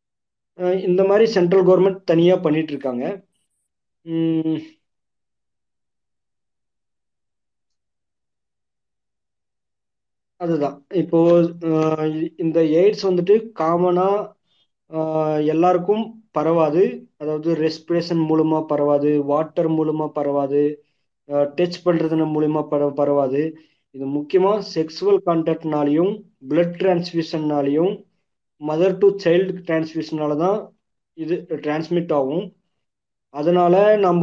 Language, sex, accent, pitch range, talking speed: Tamil, male, native, 150-180 Hz, 70 wpm